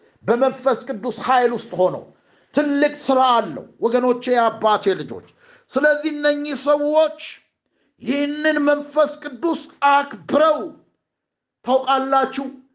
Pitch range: 240-275 Hz